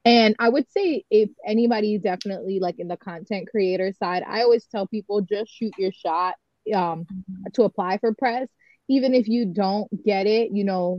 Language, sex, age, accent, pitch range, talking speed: English, female, 20-39, American, 190-225 Hz, 185 wpm